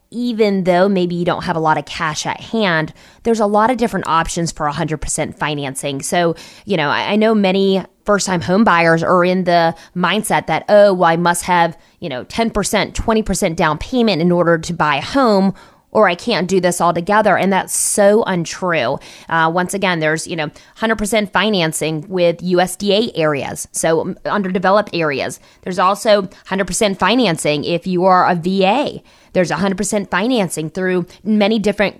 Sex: female